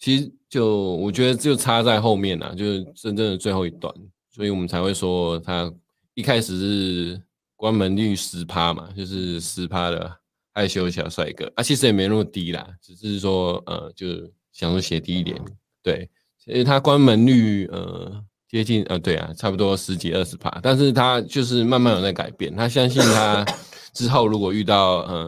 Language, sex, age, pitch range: Chinese, male, 20-39, 90-110 Hz